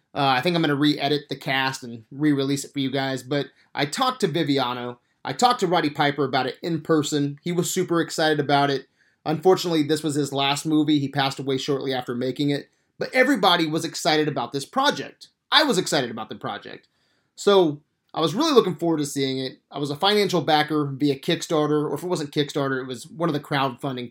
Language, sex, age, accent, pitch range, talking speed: English, male, 30-49, American, 140-170 Hz, 220 wpm